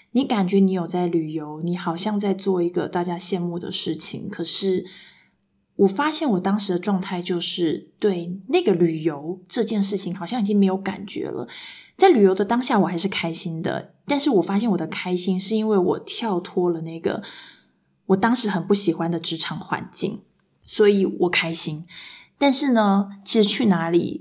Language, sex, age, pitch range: Chinese, female, 20-39, 175-200 Hz